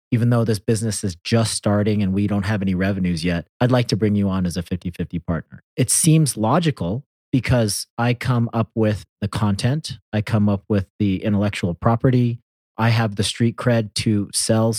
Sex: male